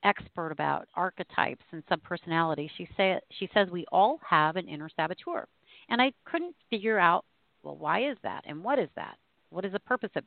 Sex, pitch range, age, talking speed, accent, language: female, 145-195 Hz, 40-59, 195 wpm, American, English